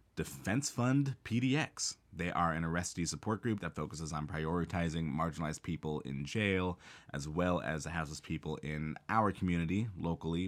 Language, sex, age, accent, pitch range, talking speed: English, male, 30-49, American, 80-95 Hz, 155 wpm